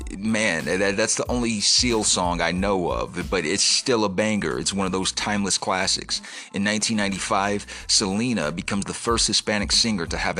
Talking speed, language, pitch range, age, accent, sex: 175 wpm, English, 90-105 Hz, 30-49, American, male